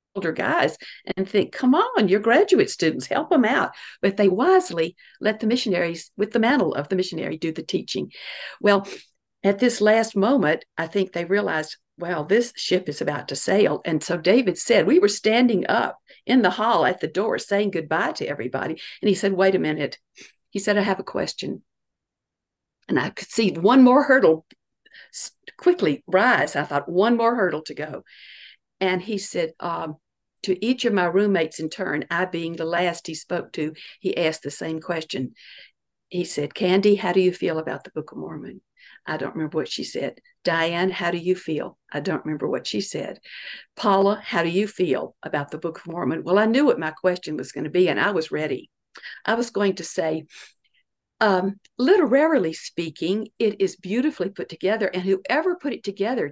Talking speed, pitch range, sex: 195 wpm, 170-215 Hz, female